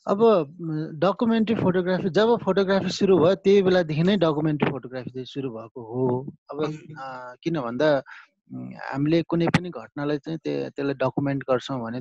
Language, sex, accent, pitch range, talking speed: English, male, Indian, 125-170 Hz, 115 wpm